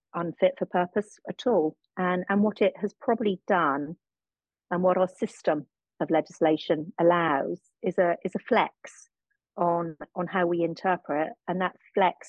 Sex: female